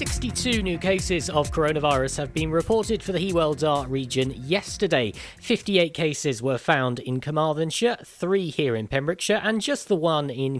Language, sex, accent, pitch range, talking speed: English, male, British, 130-170 Hz, 165 wpm